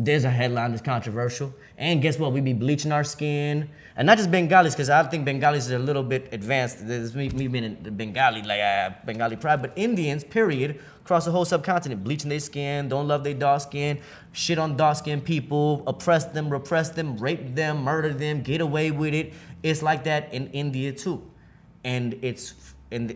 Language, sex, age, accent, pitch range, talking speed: English, male, 20-39, American, 125-160 Hz, 200 wpm